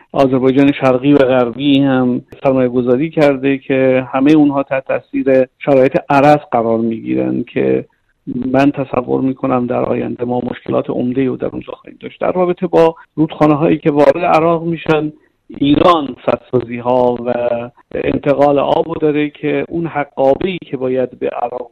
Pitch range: 125-140 Hz